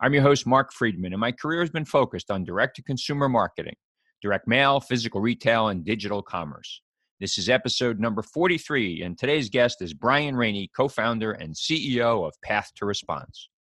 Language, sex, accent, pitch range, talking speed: English, male, American, 105-135 Hz, 170 wpm